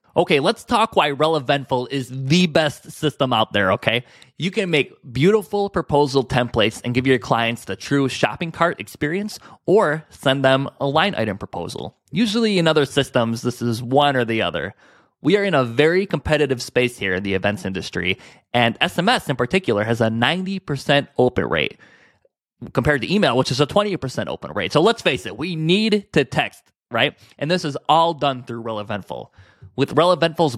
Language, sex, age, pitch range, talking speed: English, male, 20-39, 115-155 Hz, 180 wpm